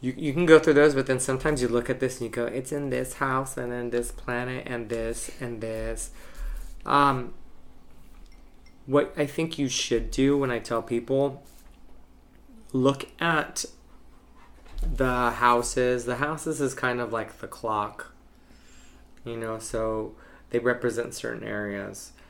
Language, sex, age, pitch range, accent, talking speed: English, male, 20-39, 105-125 Hz, American, 155 wpm